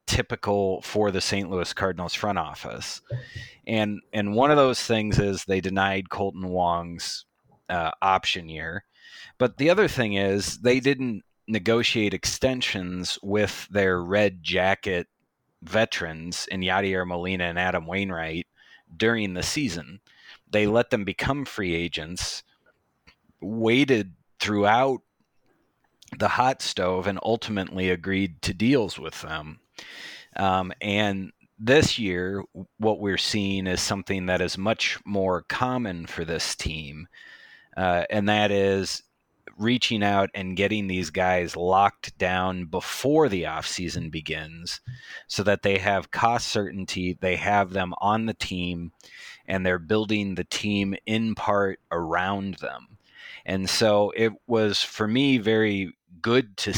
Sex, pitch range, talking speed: male, 90-110 Hz, 135 wpm